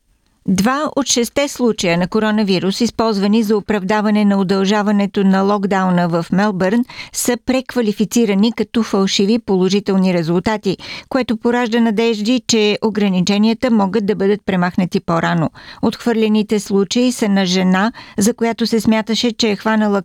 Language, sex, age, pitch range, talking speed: Bulgarian, female, 50-69, 190-230 Hz, 130 wpm